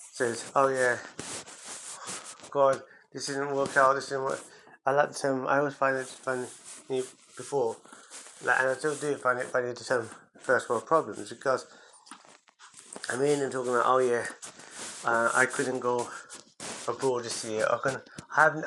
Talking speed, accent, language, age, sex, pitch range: 165 wpm, British, English, 30-49, male, 125-140 Hz